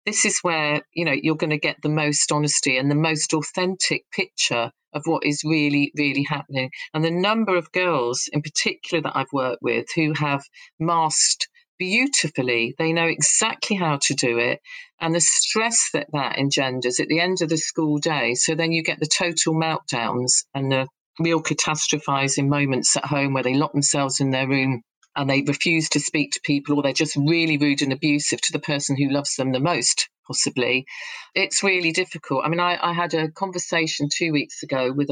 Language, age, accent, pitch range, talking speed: English, 40-59, British, 140-165 Hz, 200 wpm